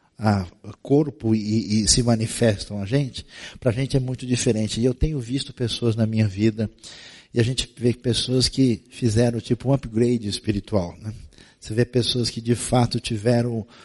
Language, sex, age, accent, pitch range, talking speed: Portuguese, male, 50-69, Brazilian, 110-130 Hz, 175 wpm